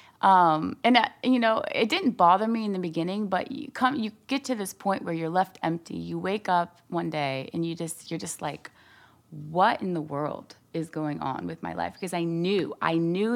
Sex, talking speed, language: female, 220 wpm, English